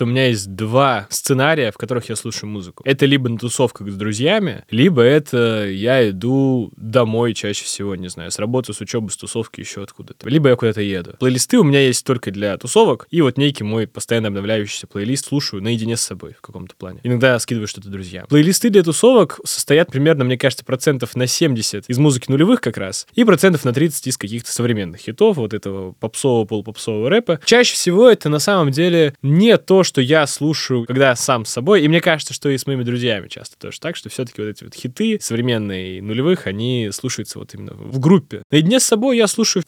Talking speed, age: 210 wpm, 20-39